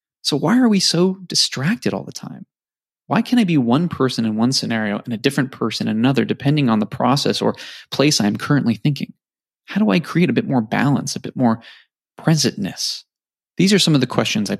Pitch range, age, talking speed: 110-150 Hz, 20-39, 220 wpm